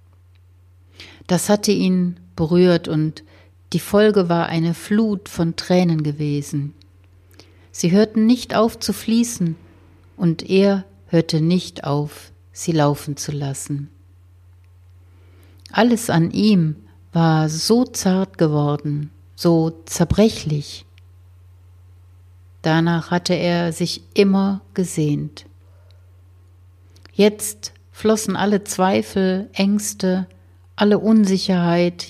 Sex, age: female, 60-79